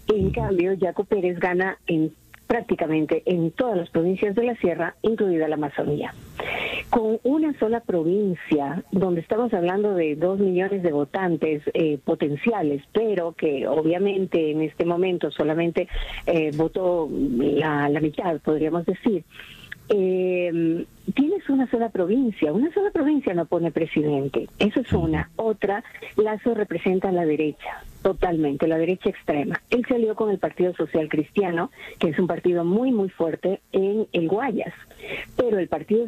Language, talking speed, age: Spanish, 150 wpm, 40-59